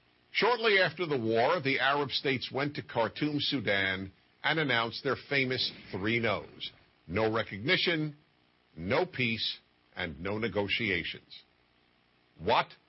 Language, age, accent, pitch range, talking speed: English, 50-69, American, 100-160 Hz, 115 wpm